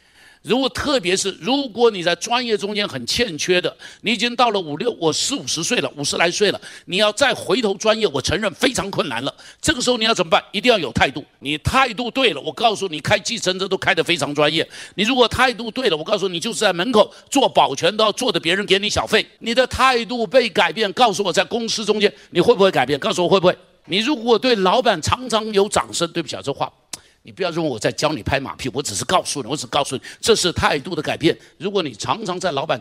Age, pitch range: 60-79, 155-225 Hz